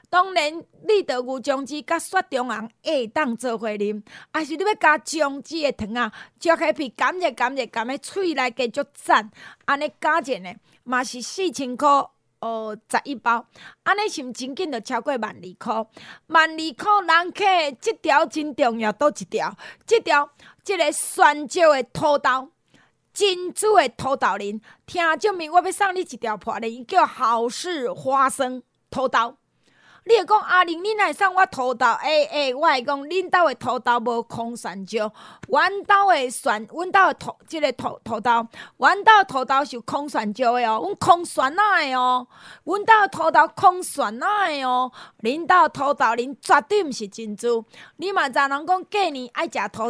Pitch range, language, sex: 240-345 Hz, Chinese, female